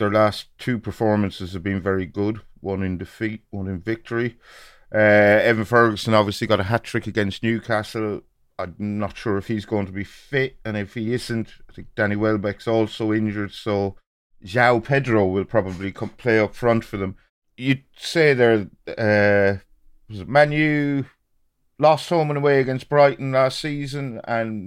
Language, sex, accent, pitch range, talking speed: English, male, British, 95-115 Hz, 165 wpm